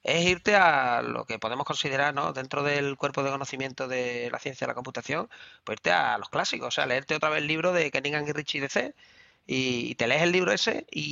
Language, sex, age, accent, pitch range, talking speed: Spanish, male, 30-49, Spanish, 130-180 Hz, 235 wpm